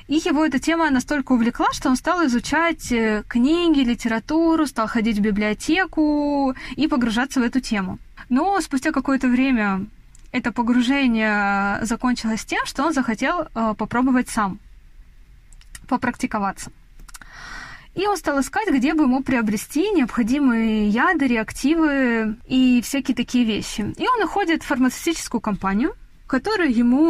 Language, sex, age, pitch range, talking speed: Russian, female, 20-39, 215-290 Hz, 125 wpm